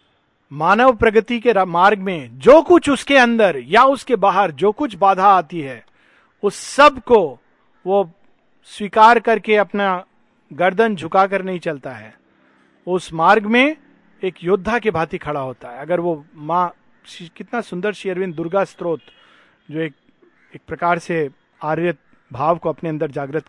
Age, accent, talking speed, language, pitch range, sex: 50-69, native, 150 wpm, Hindi, 165-225 Hz, male